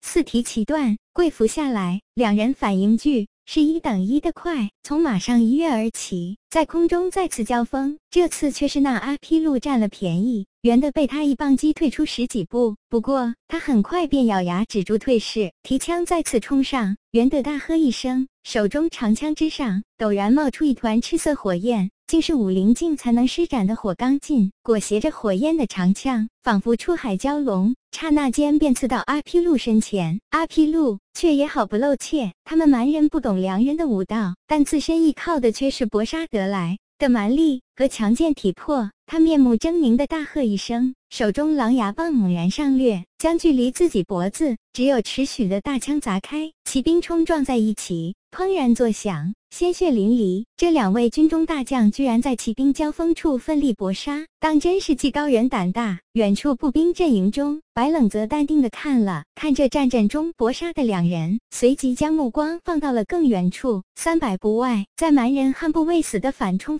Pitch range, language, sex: 220-305 Hz, Chinese, male